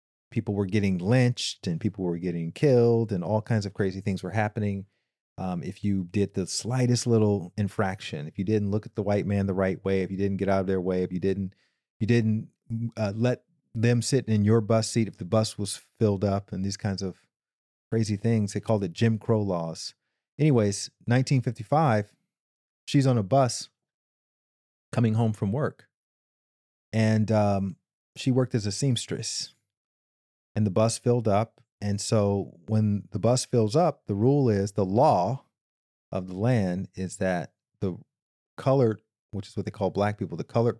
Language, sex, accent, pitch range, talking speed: English, male, American, 95-120 Hz, 185 wpm